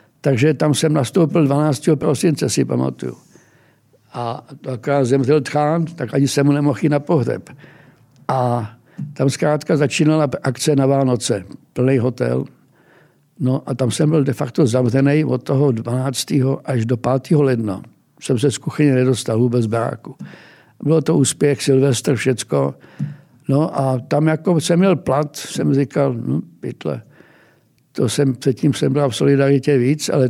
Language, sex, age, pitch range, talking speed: Czech, male, 60-79, 125-150 Hz, 150 wpm